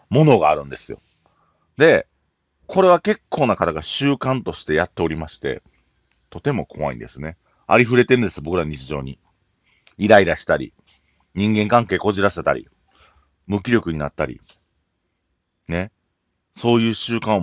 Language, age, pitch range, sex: Japanese, 40-59, 75-110 Hz, male